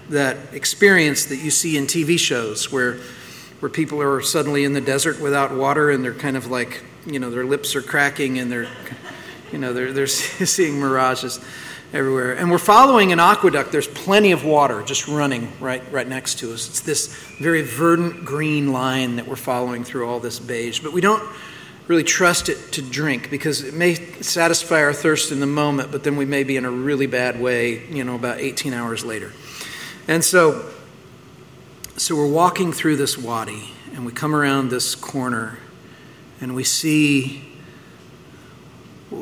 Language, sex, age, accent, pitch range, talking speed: English, male, 40-59, American, 125-155 Hz, 180 wpm